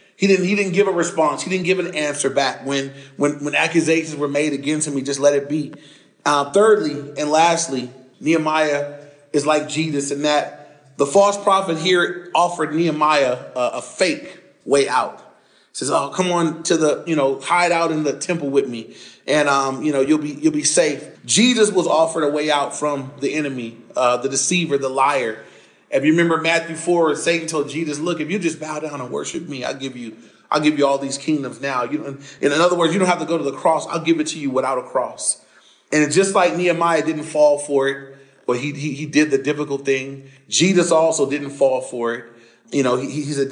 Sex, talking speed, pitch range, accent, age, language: male, 220 wpm, 140-160 Hz, American, 30-49, English